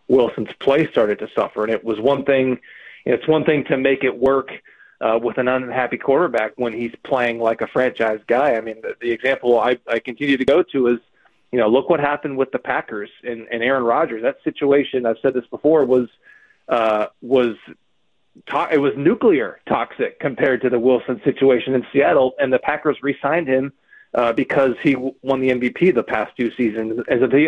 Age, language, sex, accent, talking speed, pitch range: 30-49, English, male, American, 195 wpm, 115-135 Hz